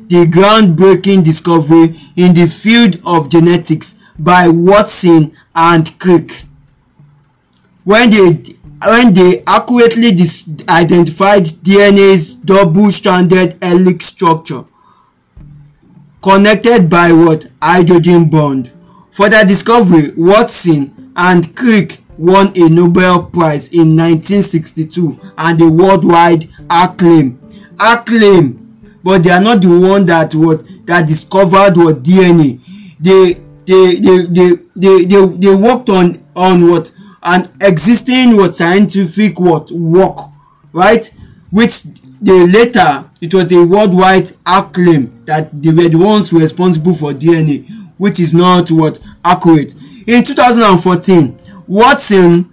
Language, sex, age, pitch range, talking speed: English, male, 20-39, 165-195 Hz, 105 wpm